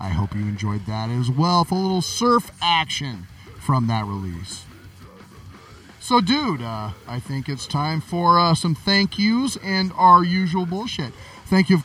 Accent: American